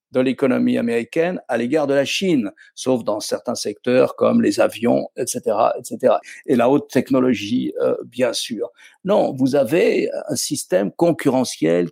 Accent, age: French, 50-69